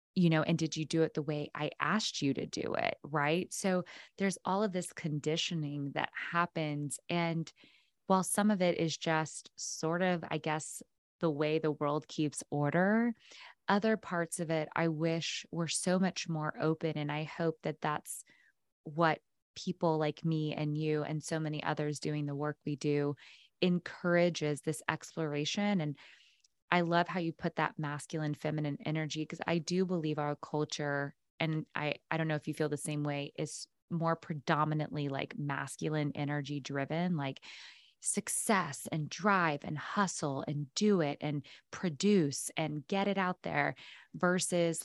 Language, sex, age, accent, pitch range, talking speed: English, female, 20-39, American, 150-175 Hz, 170 wpm